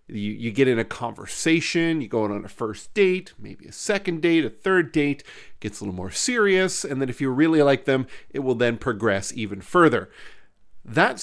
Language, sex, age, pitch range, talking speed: English, male, 40-59, 115-175 Hz, 210 wpm